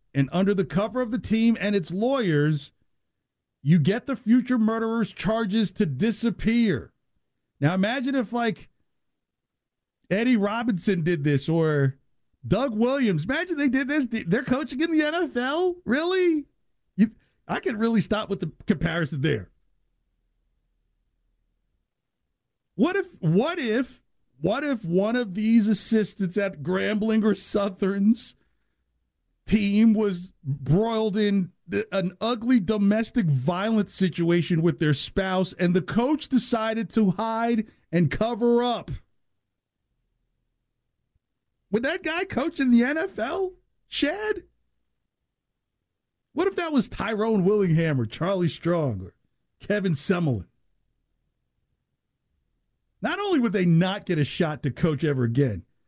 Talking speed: 125 wpm